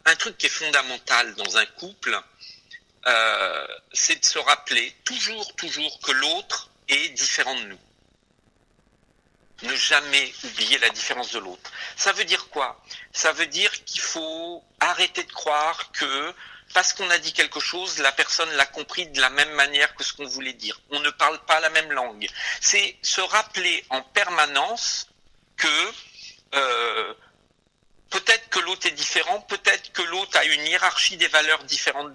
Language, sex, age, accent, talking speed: French, male, 50-69, French, 165 wpm